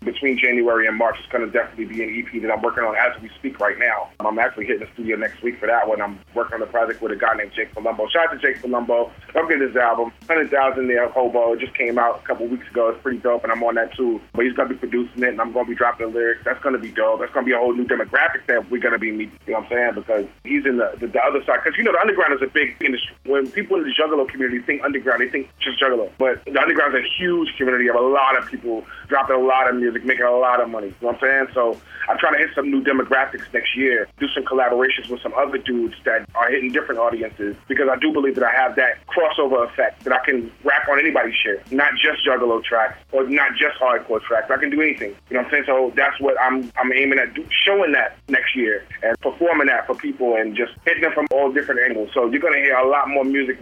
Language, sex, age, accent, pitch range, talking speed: English, male, 30-49, American, 120-140 Hz, 285 wpm